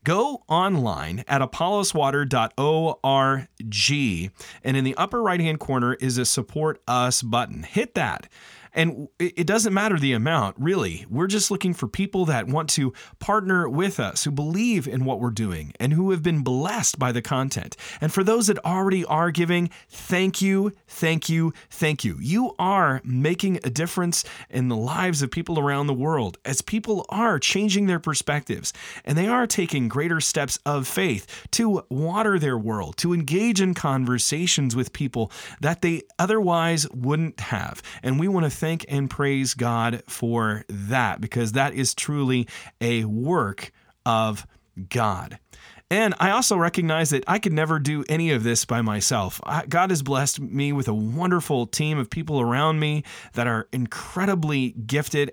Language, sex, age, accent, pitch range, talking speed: English, male, 30-49, American, 125-175 Hz, 165 wpm